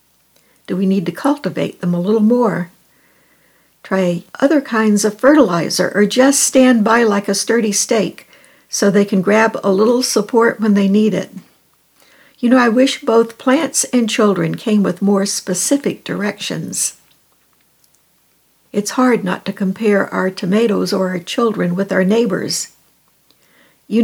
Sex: female